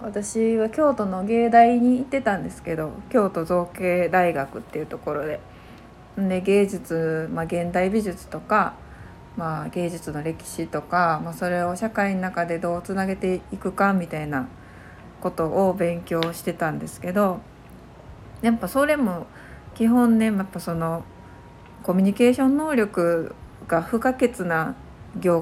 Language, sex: Japanese, female